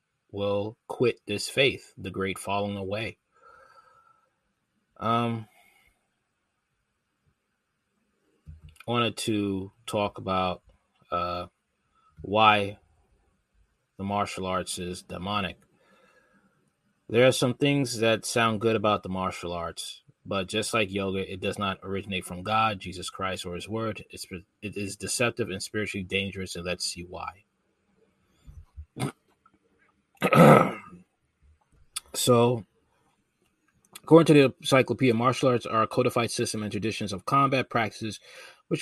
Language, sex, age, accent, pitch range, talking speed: English, male, 20-39, American, 95-115 Hz, 115 wpm